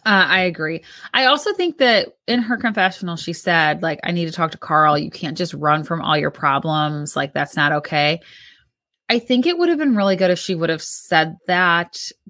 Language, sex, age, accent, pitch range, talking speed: English, female, 20-39, American, 170-225 Hz, 220 wpm